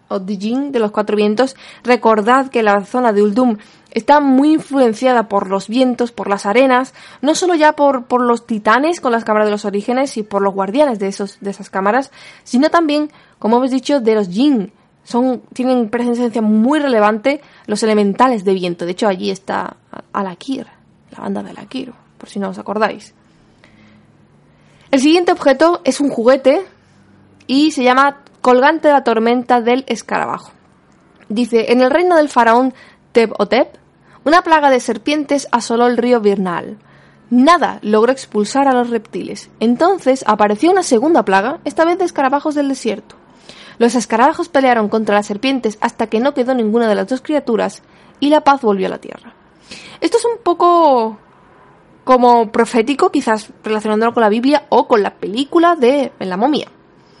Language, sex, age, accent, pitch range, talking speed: Spanish, female, 20-39, Spanish, 215-280 Hz, 165 wpm